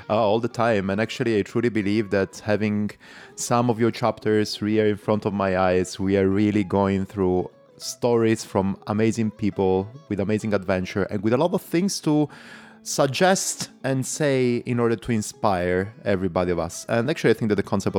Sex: male